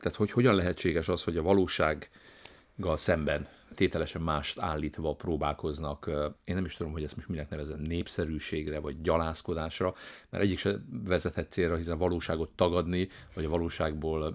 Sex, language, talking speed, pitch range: male, Hungarian, 155 wpm, 75-90 Hz